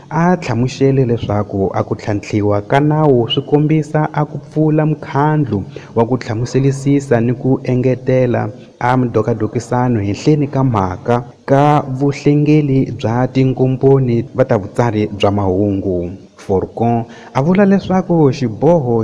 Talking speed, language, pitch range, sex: 100 wpm, Portuguese, 115-145 Hz, male